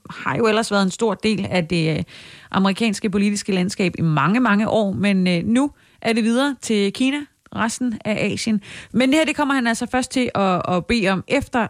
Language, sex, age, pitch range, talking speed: Danish, female, 30-49, 180-235 Hz, 200 wpm